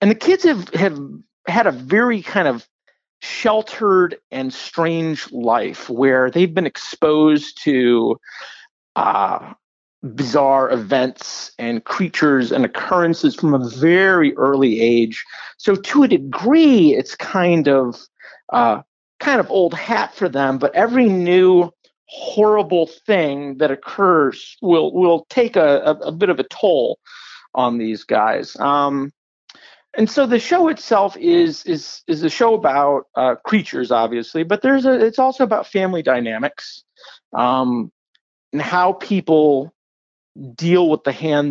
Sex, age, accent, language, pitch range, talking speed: male, 50-69, American, English, 135-200 Hz, 135 wpm